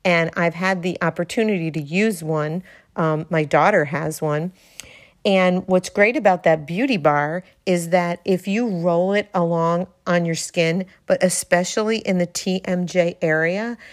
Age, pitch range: 50-69, 160-190 Hz